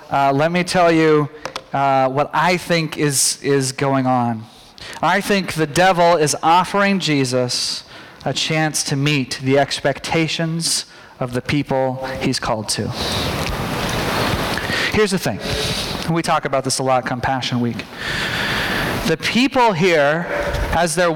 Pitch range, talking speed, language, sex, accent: 135-195 Hz, 140 wpm, English, male, American